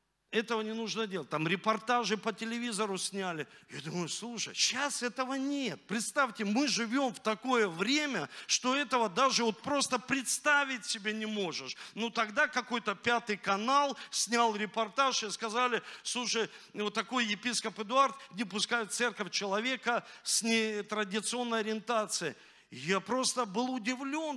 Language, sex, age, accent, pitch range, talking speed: Russian, male, 40-59, native, 200-255 Hz, 135 wpm